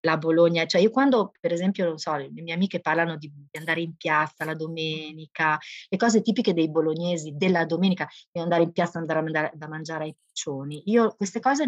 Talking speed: 200 wpm